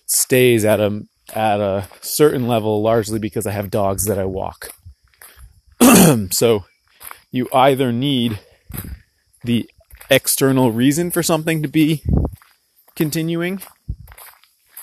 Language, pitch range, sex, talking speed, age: English, 105-125 Hz, male, 110 wpm, 20-39